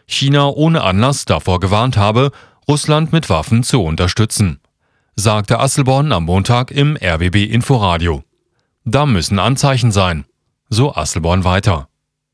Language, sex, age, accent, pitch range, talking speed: German, male, 40-59, German, 95-135 Hz, 115 wpm